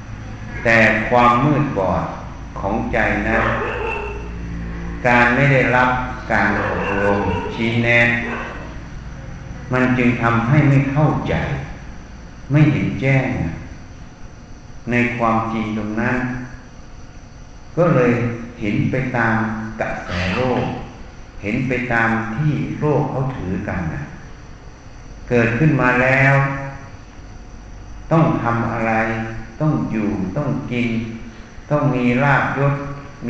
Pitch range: 105-130 Hz